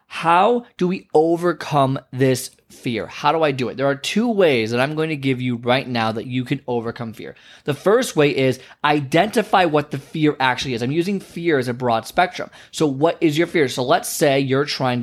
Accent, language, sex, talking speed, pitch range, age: American, English, male, 220 wpm, 130-175 Hz, 20-39